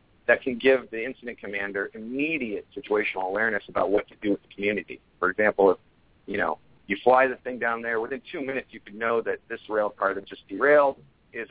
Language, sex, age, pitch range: English, male, 40-59, 100-130 Hz